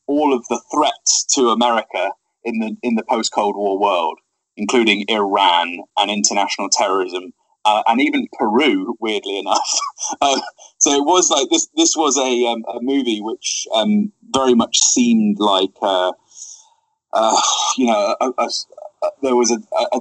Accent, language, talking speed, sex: British, English, 150 wpm, male